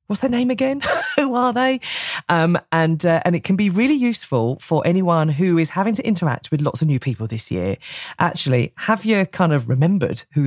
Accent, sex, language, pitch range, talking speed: British, female, English, 130-170 Hz, 210 wpm